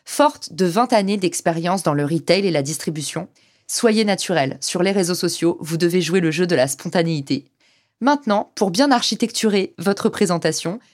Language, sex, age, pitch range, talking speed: French, female, 20-39, 170-220 Hz, 170 wpm